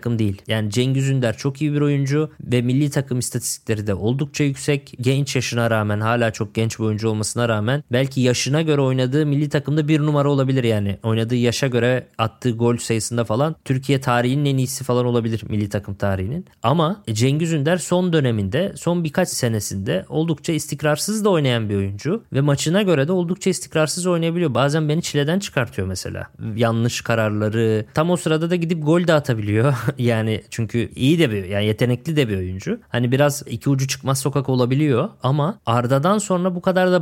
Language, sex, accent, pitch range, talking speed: Turkish, male, native, 115-150 Hz, 180 wpm